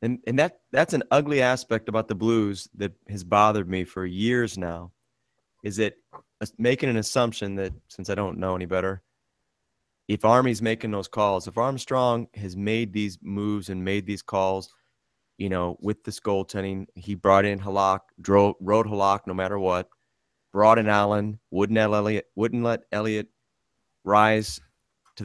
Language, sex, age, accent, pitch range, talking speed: English, male, 30-49, American, 95-110 Hz, 170 wpm